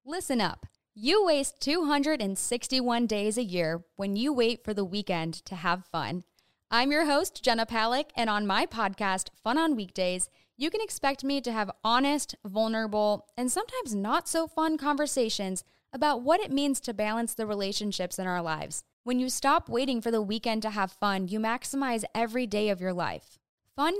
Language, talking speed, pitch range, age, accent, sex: English, 180 wpm, 205-280 Hz, 10-29, American, female